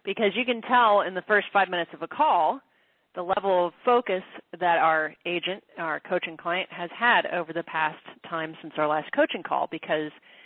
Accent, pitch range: American, 170-235 Hz